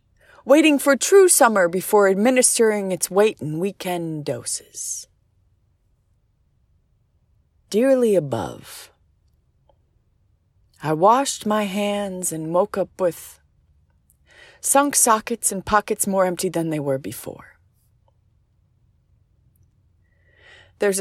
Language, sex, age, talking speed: English, female, 30-49, 90 wpm